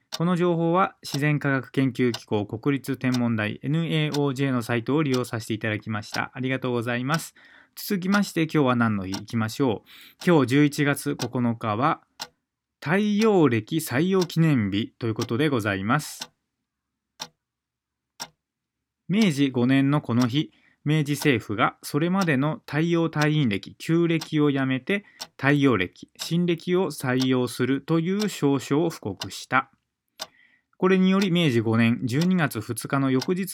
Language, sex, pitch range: Japanese, male, 120-165 Hz